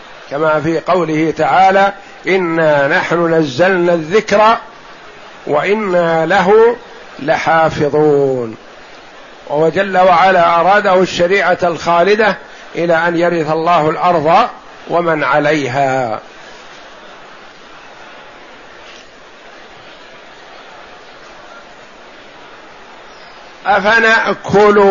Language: Arabic